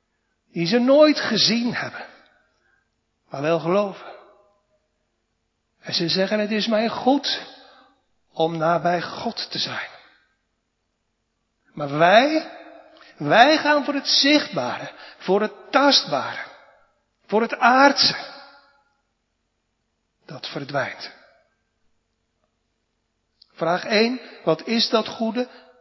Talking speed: 95 wpm